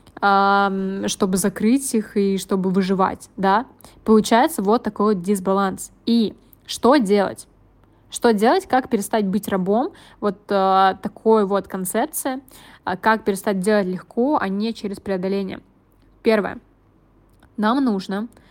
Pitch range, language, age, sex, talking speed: 200-230 Hz, Russian, 20-39, female, 120 wpm